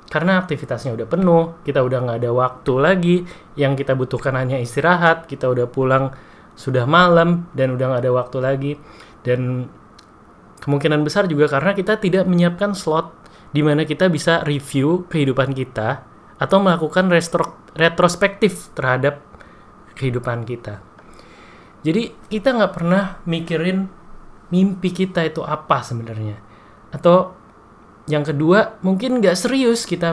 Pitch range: 125-180 Hz